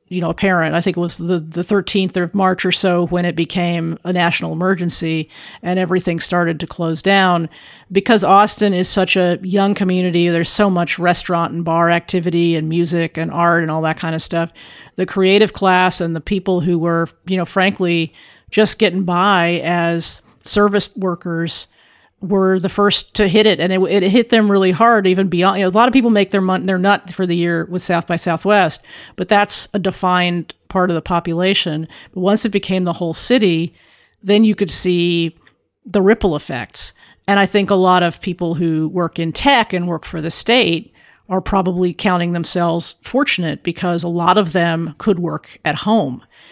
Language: English